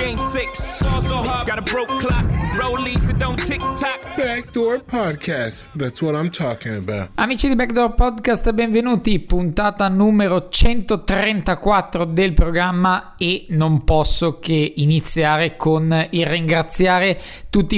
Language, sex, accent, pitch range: Italian, male, native, 145-180 Hz